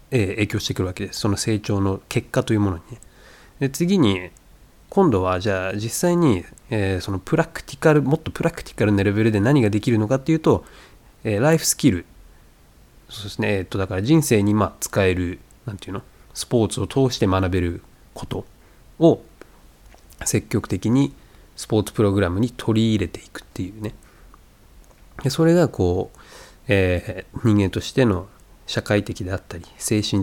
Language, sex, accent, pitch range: Japanese, male, native, 95-130 Hz